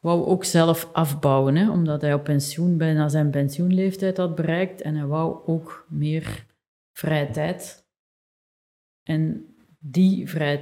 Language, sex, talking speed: Dutch, female, 130 wpm